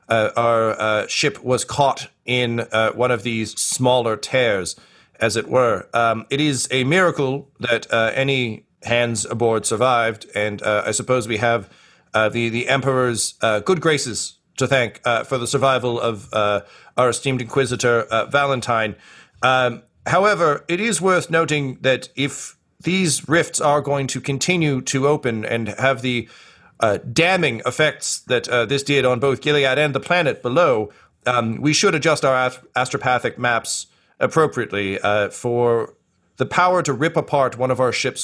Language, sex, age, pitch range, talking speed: English, male, 40-59, 115-140 Hz, 165 wpm